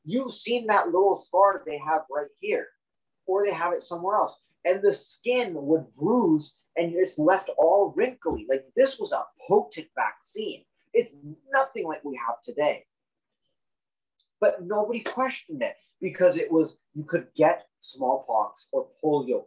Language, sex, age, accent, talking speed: English, male, 20-39, American, 155 wpm